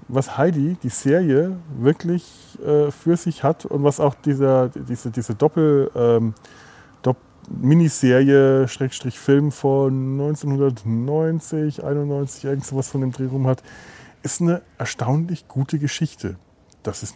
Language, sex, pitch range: German, male, 120-155 Hz